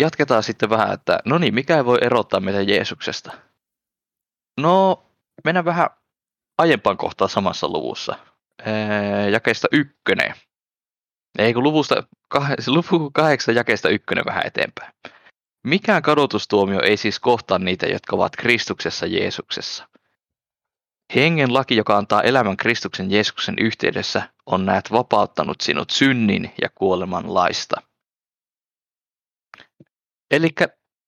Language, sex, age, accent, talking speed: Finnish, male, 20-39, native, 115 wpm